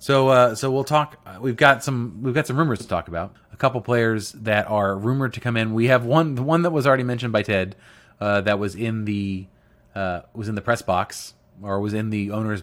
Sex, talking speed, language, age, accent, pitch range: male, 240 wpm, English, 30-49, American, 100-120 Hz